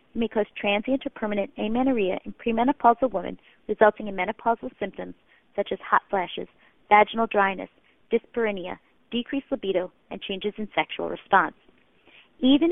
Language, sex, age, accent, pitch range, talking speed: English, female, 40-59, American, 200-255 Hz, 130 wpm